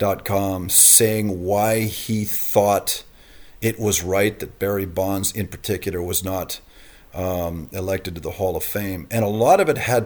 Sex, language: male, English